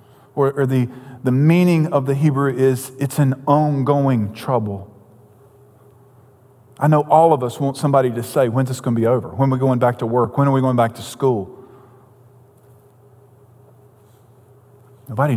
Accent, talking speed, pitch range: American, 165 wpm, 125-140 Hz